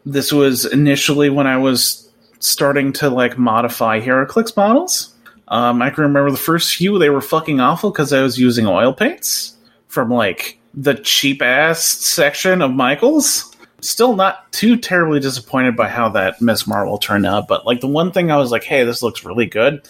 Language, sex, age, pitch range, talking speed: English, male, 30-49, 130-170 Hz, 185 wpm